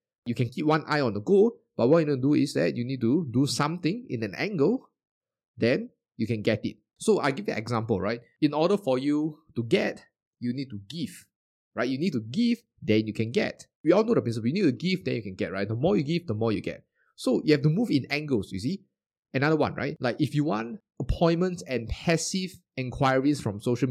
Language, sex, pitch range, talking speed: English, male, 115-155 Hz, 250 wpm